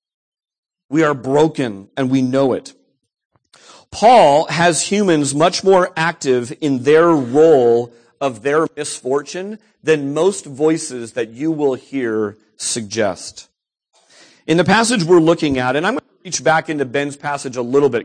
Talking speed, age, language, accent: 150 wpm, 40-59, English, American